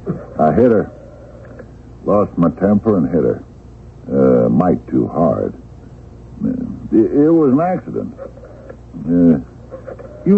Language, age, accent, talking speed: English, 60-79, American, 120 wpm